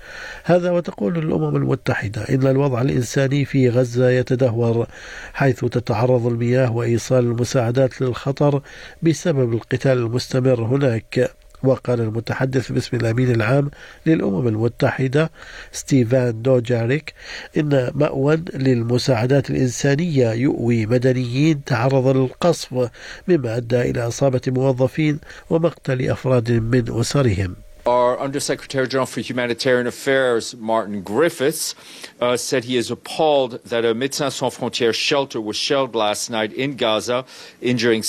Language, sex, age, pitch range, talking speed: Arabic, male, 50-69, 120-135 Hz, 115 wpm